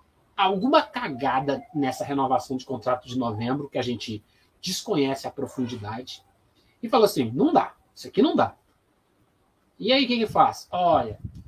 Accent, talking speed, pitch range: Brazilian, 150 wpm, 140-235 Hz